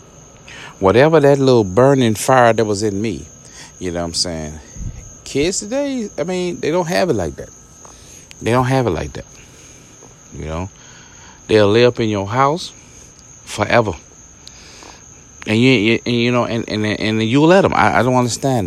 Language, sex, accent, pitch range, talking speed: English, male, American, 105-155 Hz, 175 wpm